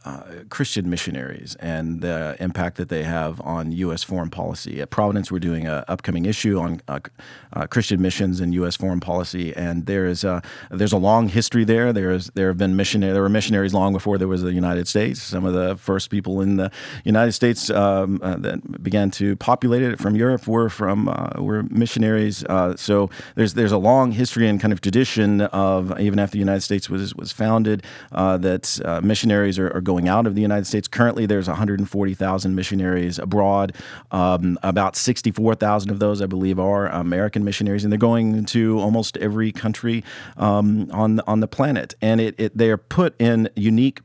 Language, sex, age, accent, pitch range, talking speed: English, male, 40-59, American, 95-110 Hz, 200 wpm